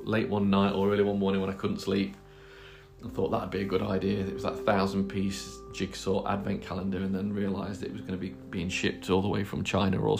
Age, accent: 30-49, British